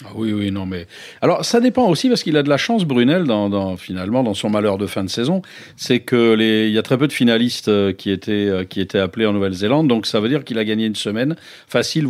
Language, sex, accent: French, male, French